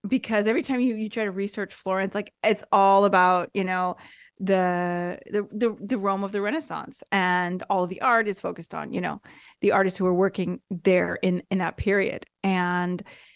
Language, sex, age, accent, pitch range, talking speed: English, female, 20-39, American, 185-220 Hz, 195 wpm